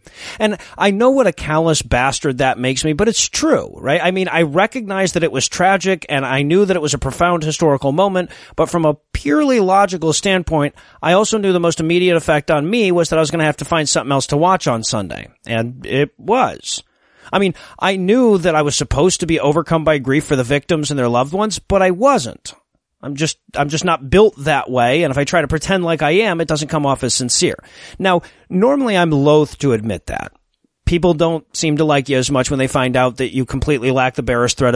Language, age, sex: English, 30-49, male